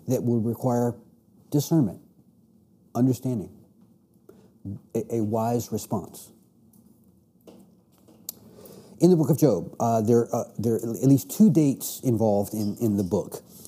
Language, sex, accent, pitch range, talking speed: English, male, American, 110-140 Hz, 125 wpm